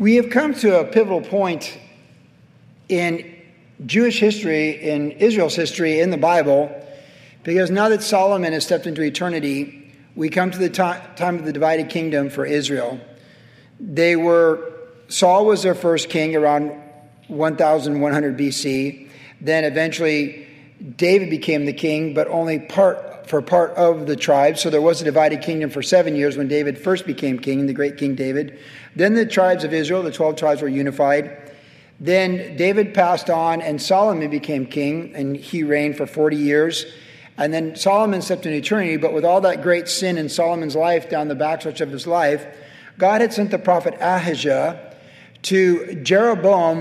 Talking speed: 165 wpm